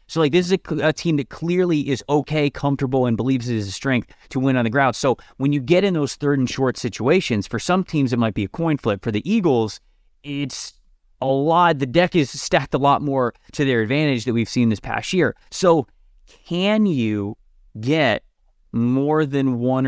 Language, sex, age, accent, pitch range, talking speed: English, male, 30-49, American, 115-155 Hz, 215 wpm